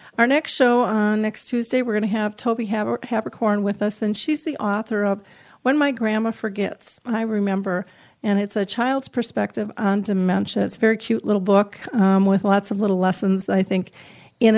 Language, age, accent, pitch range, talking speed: English, 40-59, American, 200-225 Hz, 200 wpm